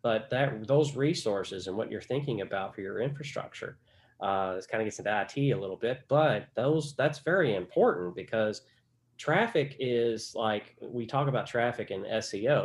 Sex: male